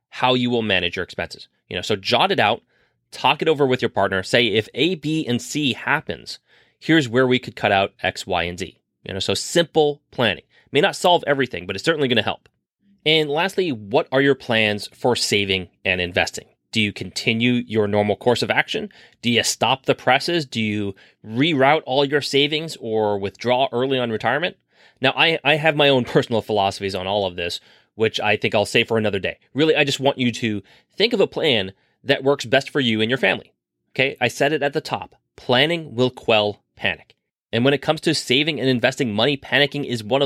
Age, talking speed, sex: 30-49, 215 wpm, male